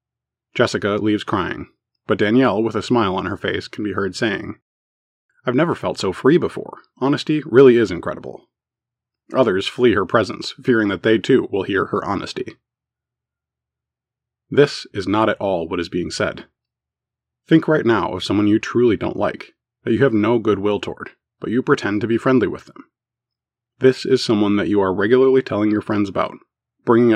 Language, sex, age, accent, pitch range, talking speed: English, male, 20-39, American, 105-125 Hz, 180 wpm